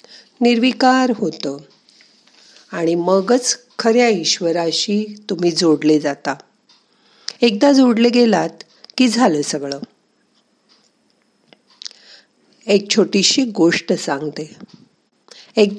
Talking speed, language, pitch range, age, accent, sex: 55 wpm, Marathi, 165-225 Hz, 50-69, native, female